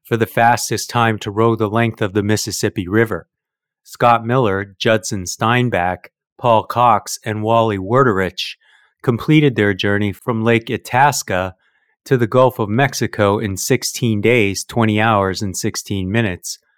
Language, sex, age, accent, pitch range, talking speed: English, male, 30-49, American, 100-120 Hz, 145 wpm